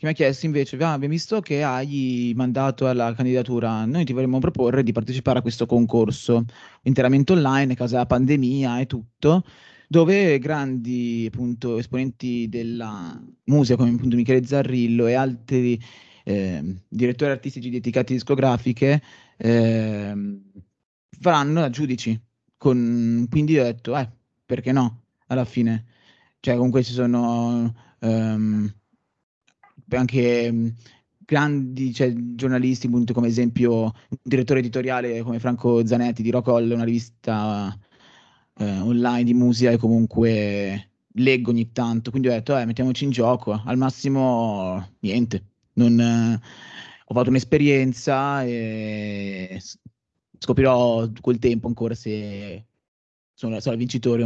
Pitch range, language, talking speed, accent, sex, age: 115-130 Hz, Italian, 130 wpm, native, male, 20-39